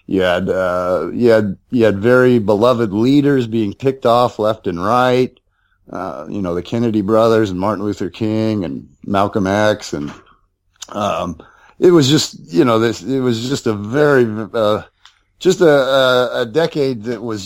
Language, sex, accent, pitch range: English, male, American, 95-125 Hz